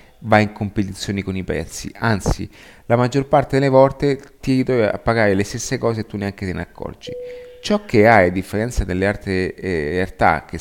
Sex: male